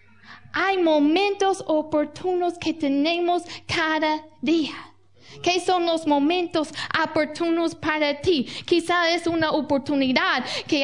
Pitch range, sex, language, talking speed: 290-345 Hz, female, Spanish, 105 wpm